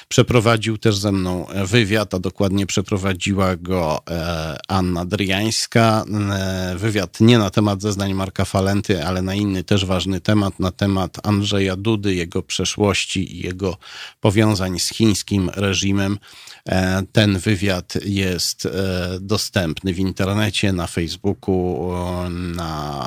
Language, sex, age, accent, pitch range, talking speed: Polish, male, 40-59, native, 95-110 Hz, 115 wpm